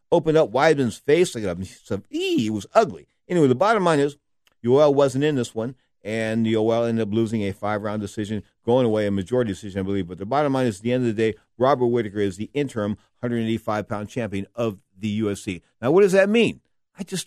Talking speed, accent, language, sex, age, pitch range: 225 wpm, American, English, male, 50-69, 105-130 Hz